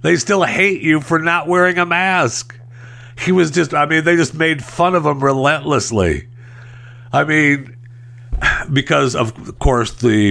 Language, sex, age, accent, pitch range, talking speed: English, male, 60-79, American, 95-140 Hz, 155 wpm